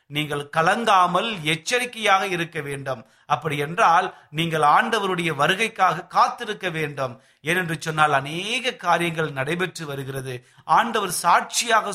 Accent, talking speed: native, 100 wpm